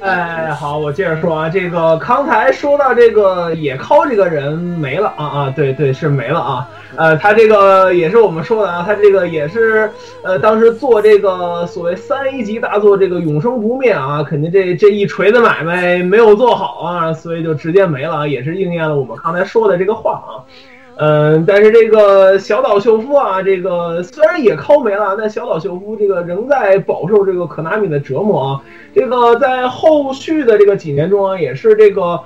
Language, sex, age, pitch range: Chinese, male, 20-39, 155-220 Hz